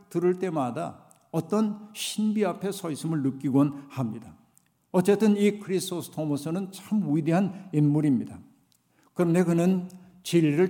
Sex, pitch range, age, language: male, 150-185 Hz, 60-79, Korean